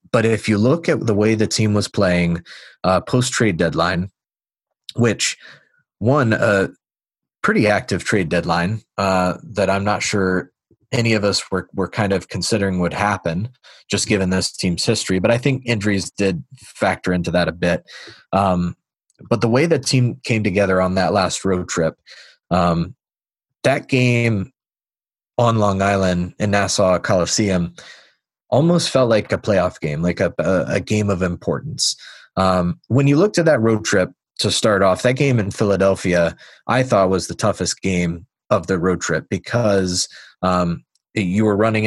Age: 20-39